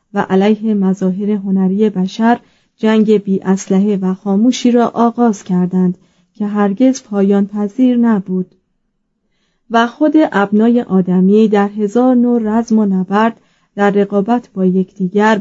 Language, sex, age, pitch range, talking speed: Persian, female, 30-49, 190-230 Hz, 125 wpm